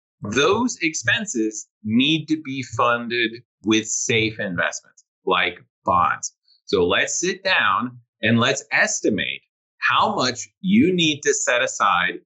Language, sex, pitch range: English, male, 120-155 Hz